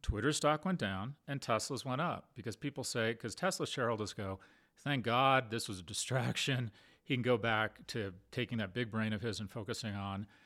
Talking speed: 200 wpm